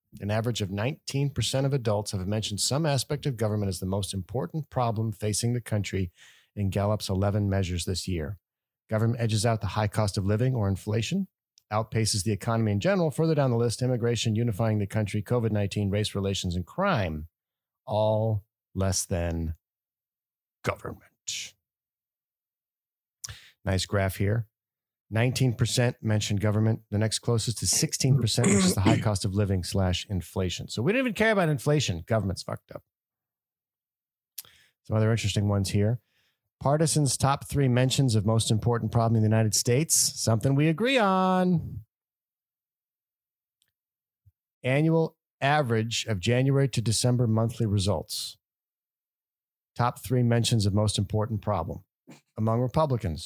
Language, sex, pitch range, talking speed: English, male, 100-125 Hz, 140 wpm